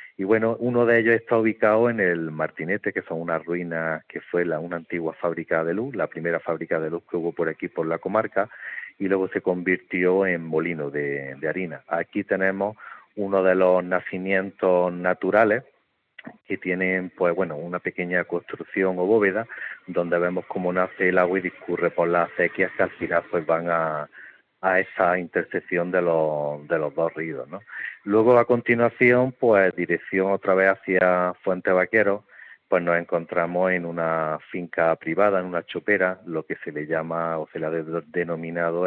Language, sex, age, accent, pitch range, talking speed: Spanish, male, 40-59, Spanish, 80-95 Hz, 180 wpm